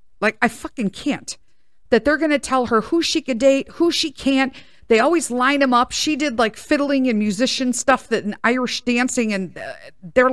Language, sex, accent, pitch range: English, female, American, 210-275 Hz